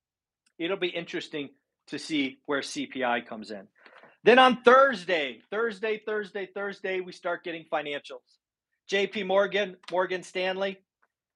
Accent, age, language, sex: American, 40-59, English, male